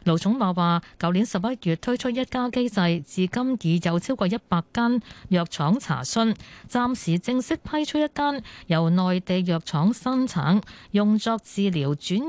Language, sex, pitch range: Chinese, female, 165-230 Hz